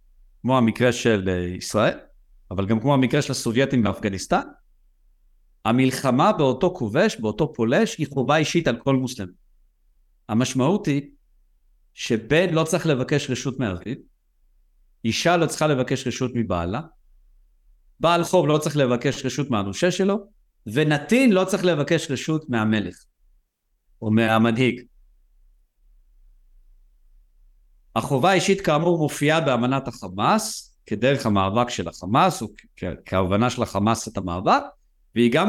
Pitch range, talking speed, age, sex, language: 90-150 Hz, 120 wpm, 50-69, male, Hebrew